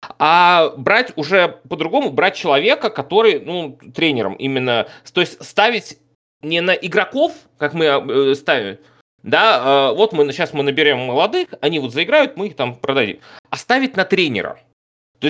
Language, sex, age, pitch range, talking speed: Russian, male, 30-49, 145-220 Hz, 150 wpm